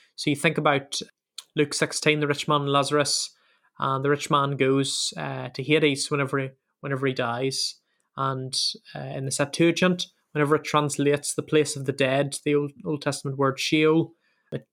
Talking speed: 175 wpm